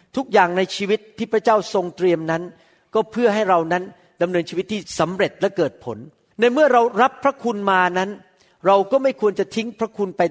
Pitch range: 175-230 Hz